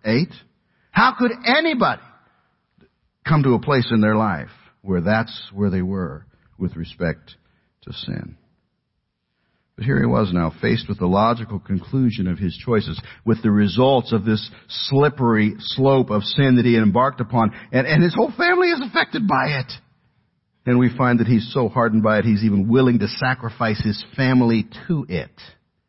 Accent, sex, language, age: American, male, English, 60-79